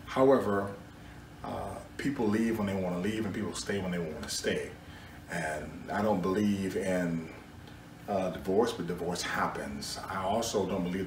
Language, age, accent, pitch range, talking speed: English, 30-49, American, 85-95 Hz, 150 wpm